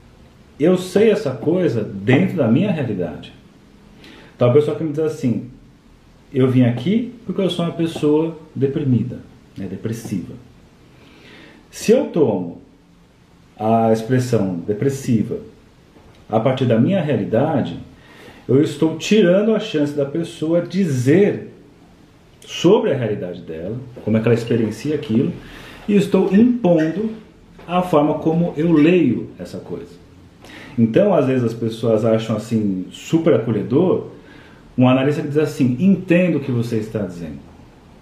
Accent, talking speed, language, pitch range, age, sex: Brazilian, 135 wpm, Portuguese, 115-155 Hz, 40-59, male